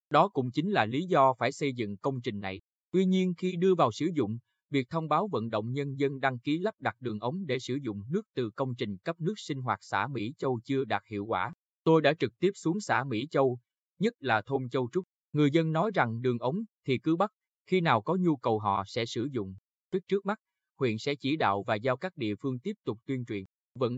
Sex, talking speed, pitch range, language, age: male, 245 wpm, 110-160 Hz, Vietnamese, 20-39